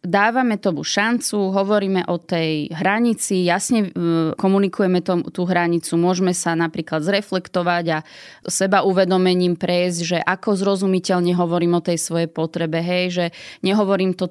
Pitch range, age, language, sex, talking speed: 175-195 Hz, 20-39, Slovak, female, 130 wpm